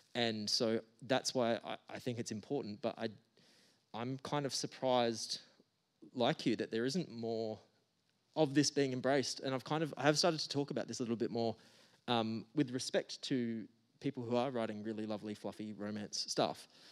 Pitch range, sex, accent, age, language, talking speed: 110-135 Hz, male, Australian, 20-39, English, 190 wpm